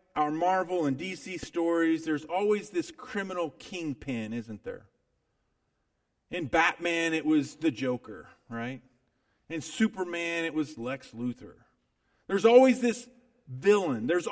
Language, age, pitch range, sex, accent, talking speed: English, 40-59, 160-245 Hz, male, American, 125 wpm